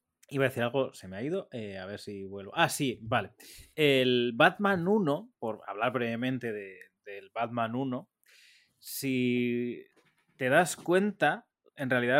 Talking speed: 160 wpm